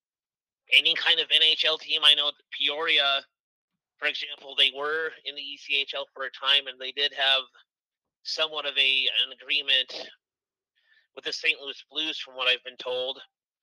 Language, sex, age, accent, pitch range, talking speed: English, male, 30-49, American, 135-155 Hz, 165 wpm